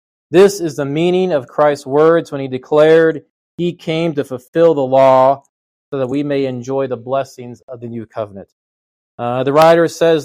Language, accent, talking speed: English, American, 180 wpm